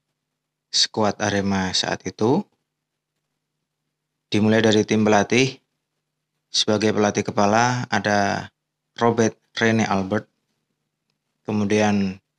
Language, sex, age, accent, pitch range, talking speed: Indonesian, male, 20-39, native, 100-110 Hz, 75 wpm